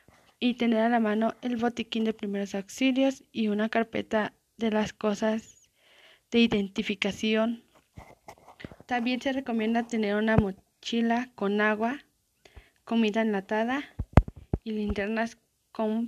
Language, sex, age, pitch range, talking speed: Spanish, female, 20-39, 195-230 Hz, 115 wpm